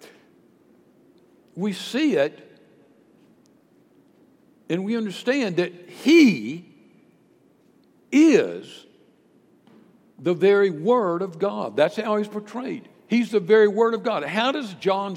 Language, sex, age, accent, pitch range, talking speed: English, male, 60-79, American, 175-220 Hz, 105 wpm